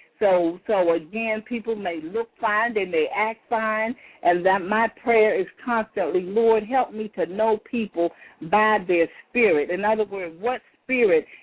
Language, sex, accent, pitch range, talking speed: English, female, American, 190-240 Hz, 165 wpm